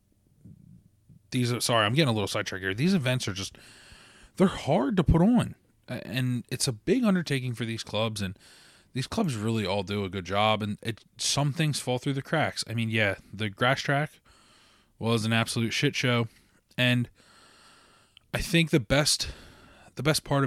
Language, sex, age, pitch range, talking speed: English, male, 20-39, 100-120 Hz, 180 wpm